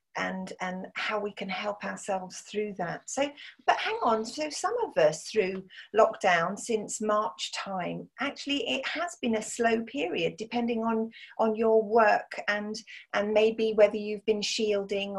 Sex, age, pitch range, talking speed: female, 40-59, 195-235 Hz, 160 wpm